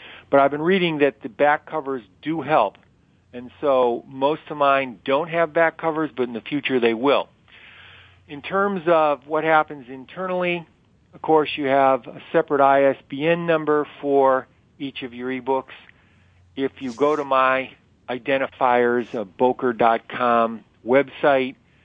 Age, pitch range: 50-69, 120-145 Hz